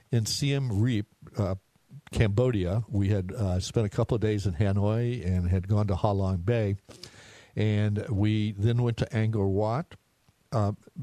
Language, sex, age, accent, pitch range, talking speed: English, male, 60-79, American, 95-115 Hz, 165 wpm